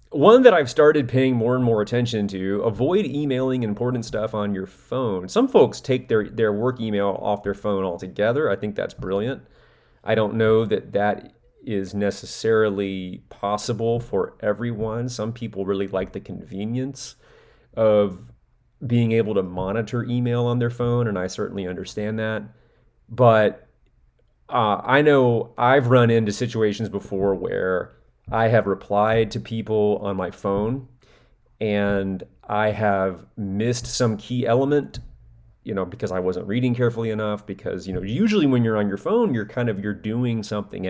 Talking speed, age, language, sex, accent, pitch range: 160 wpm, 30-49, English, male, American, 100-120 Hz